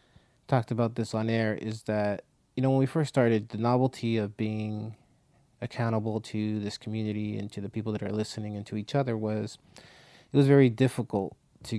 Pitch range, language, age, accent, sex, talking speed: 105-125 Hz, English, 30-49, American, male, 195 wpm